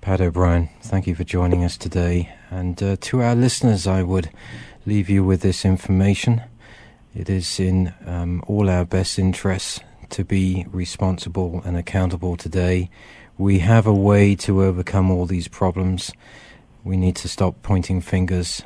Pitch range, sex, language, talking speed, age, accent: 85-95 Hz, male, English, 160 wpm, 40-59, British